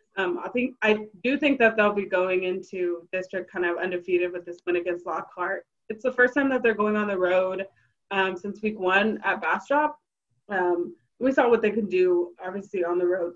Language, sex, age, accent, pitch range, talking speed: English, female, 20-39, American, 185-230 Hz, 210 wpm